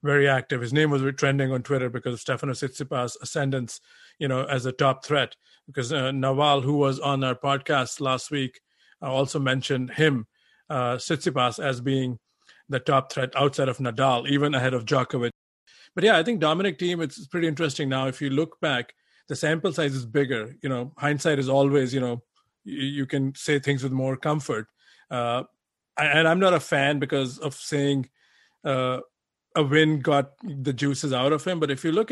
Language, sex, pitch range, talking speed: English, male, 130-150 Hz, 190 wpm